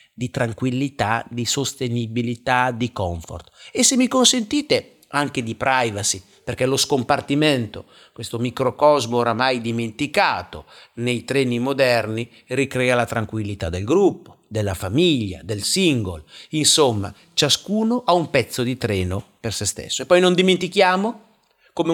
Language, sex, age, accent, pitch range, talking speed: Italian, male, 50-69, native, 115-155 Hz, 130 wpm